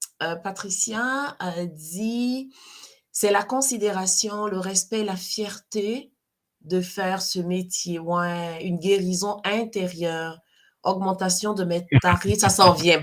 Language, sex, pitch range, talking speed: French, female, 190-280 Hz, 120 wpm